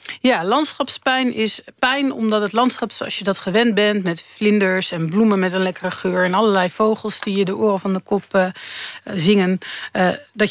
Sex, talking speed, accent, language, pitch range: female, 195 wpm, Dutch, Dutch, 190-225 Hz